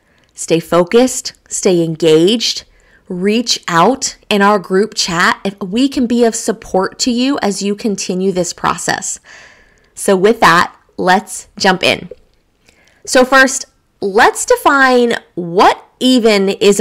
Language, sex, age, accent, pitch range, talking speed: English, female, 20-39, American, 195-255 Hz, 130 wpm